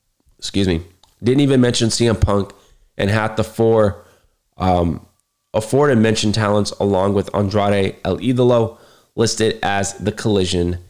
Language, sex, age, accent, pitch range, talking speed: English, male, 20-39, American, 95-115 Hz, 130 wpm